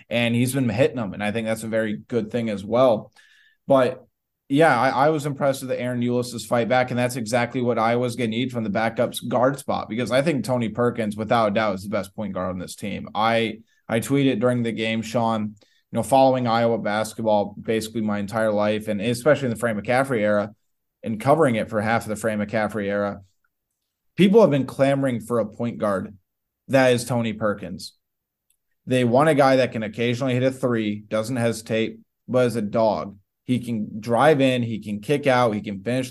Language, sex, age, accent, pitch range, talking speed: English, male, 20-39, American, 110-125 Hz, 215 wpm